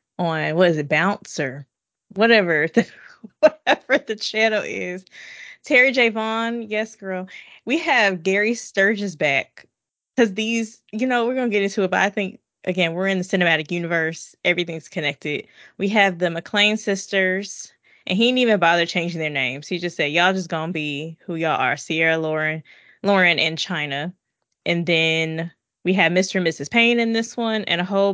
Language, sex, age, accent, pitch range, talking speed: English, female, 10-29, American, 165-220 Hz, 175 wpm